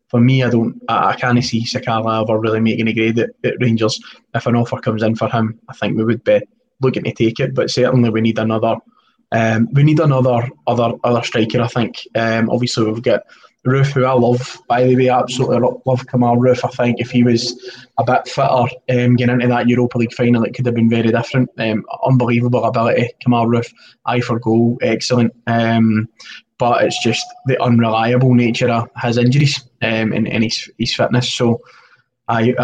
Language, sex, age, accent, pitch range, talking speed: English, male, 20-39, British, 115-130 Hz, 205 wpm